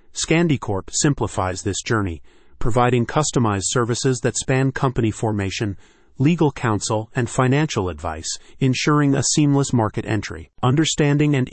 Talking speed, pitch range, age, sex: 120 wpm, 110-135 Hz, 40-59, male